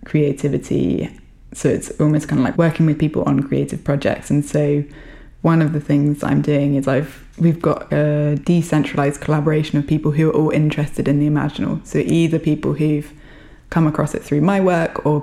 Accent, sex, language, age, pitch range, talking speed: British, female, English, 20-39, 145-155 Hz, 190 wpm